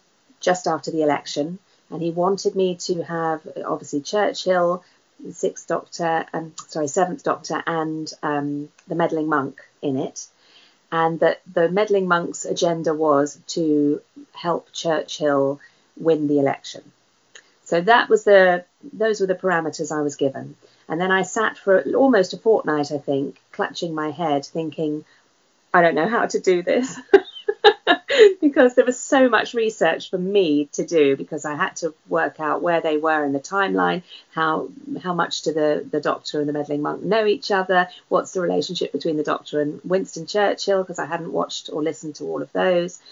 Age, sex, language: 40-59, female, English